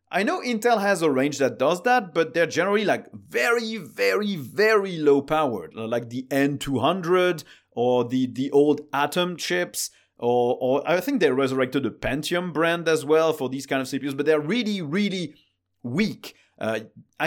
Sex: male